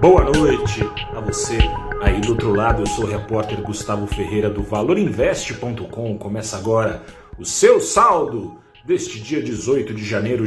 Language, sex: Portuguese, male